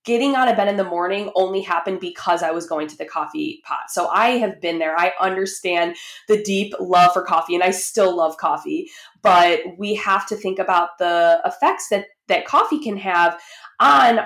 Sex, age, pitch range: female, 20-39, 175-220 Hz